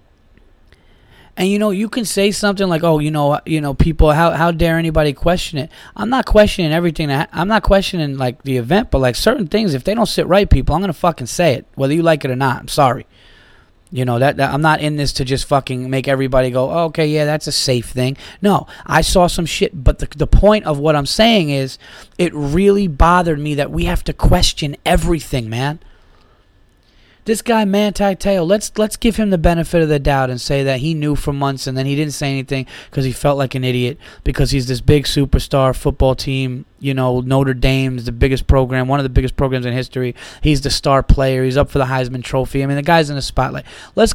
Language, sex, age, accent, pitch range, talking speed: English, male, 20-39, American, 130-170 Hz, 235 wpm